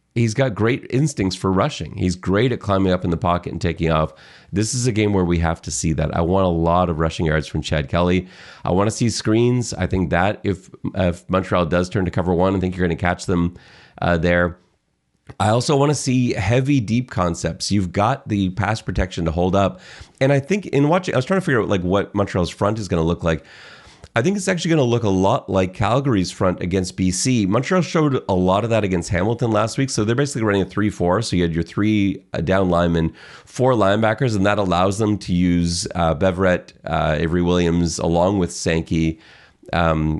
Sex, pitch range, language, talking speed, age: male, 85-110 Hz, English, 225 wpm, 30-49